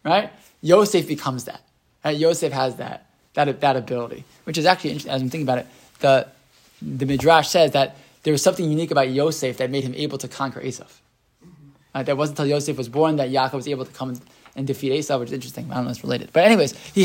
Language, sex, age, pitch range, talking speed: English, male, 20-39, 140-185 Hz, 230 wpm